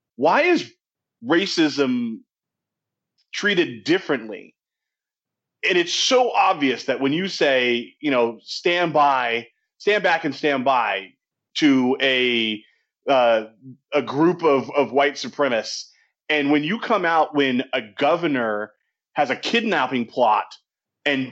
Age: 30-49